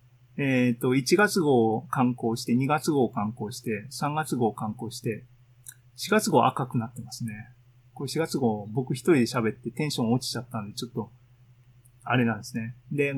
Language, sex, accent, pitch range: Japanese, male, native, 120-160 Hz